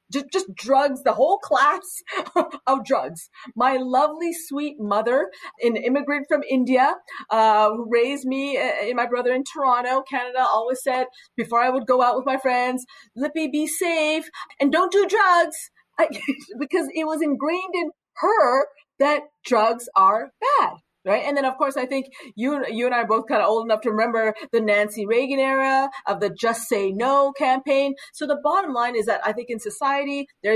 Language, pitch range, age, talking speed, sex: English, 220-285 Hz, 40-59, 185 wpm, female